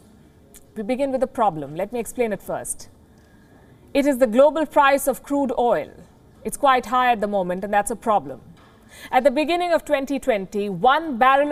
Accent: Indian